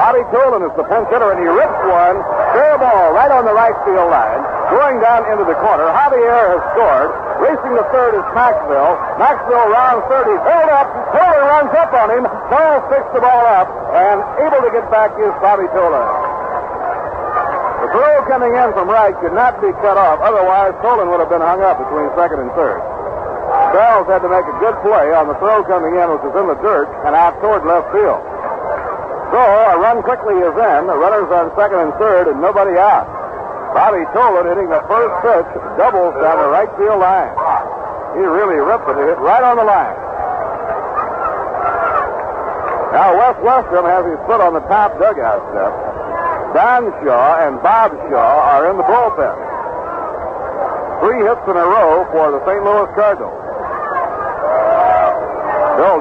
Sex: male